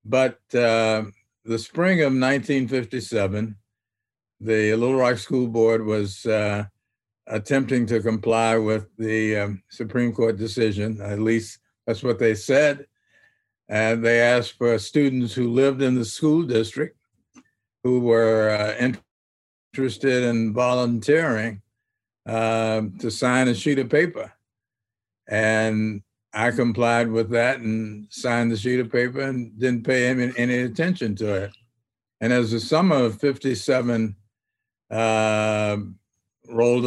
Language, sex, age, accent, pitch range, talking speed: English, male, 60-79, American, 105-125 Hz, 130 wpm